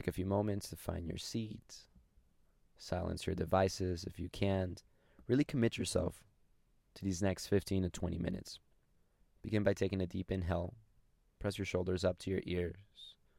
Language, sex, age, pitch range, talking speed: English, male, 20-39, 85-100 Hz, 165 wpm